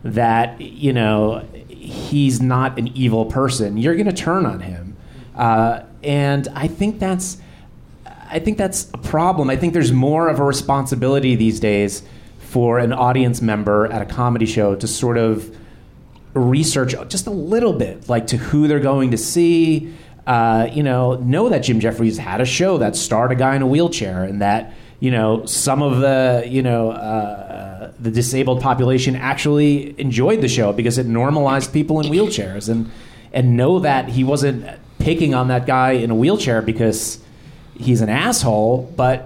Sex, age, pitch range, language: male, 30-49, 115-145 Hz, English